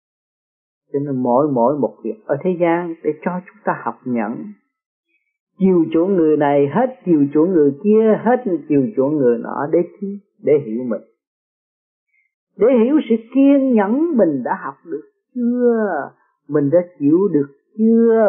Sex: male